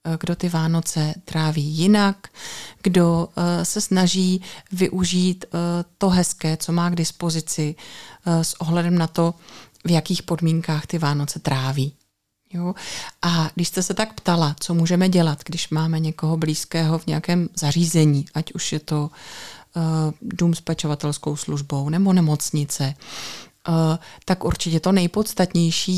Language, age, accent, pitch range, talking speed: Czech, 30-49, native, 160-190 Hz, 125 wpm